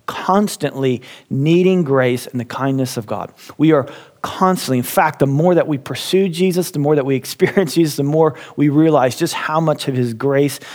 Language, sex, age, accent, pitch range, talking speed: English, male, 40-59, American, 130-165 Hz, 195 wpm